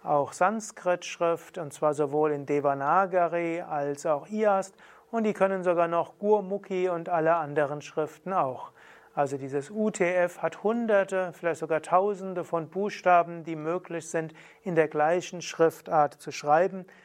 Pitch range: 155-185 Hz